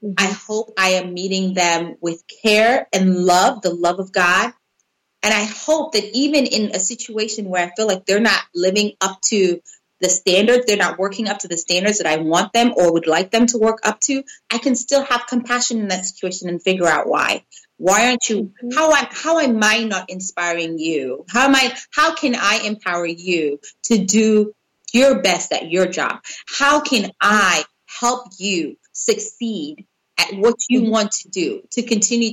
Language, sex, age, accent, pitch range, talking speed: English, female, 30-49, American, 180-235 Hz, 190 wpm